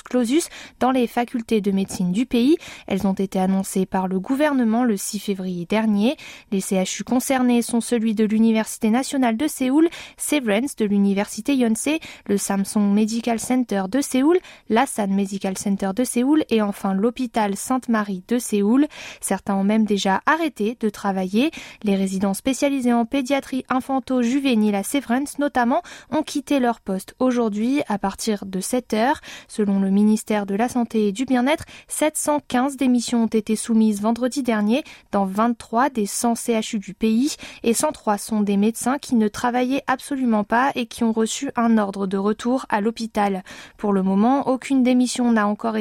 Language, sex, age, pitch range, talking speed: French, female, 20-39, 205-260 Hz, 165 wpm